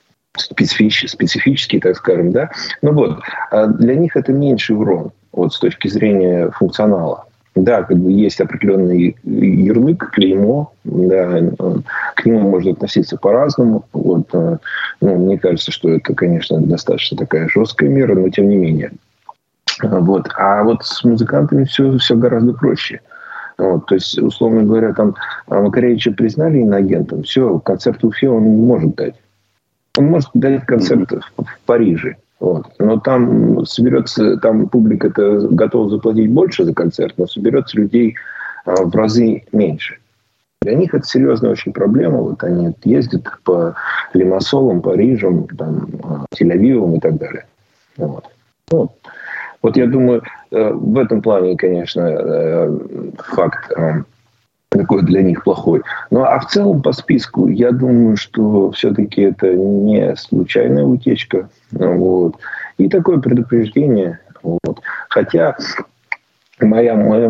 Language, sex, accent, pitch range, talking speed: Russian, male, native, 95-120 Hz, 130 wpm